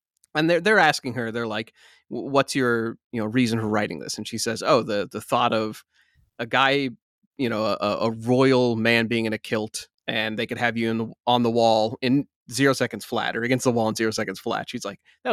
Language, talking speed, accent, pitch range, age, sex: English, 235 wpm, American, 115-145 Hz, 30-49, male